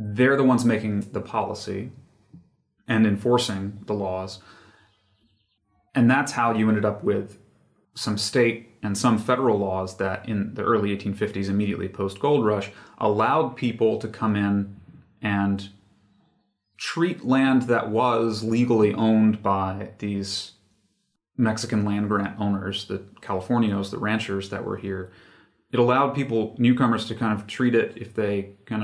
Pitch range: 100-115 Hz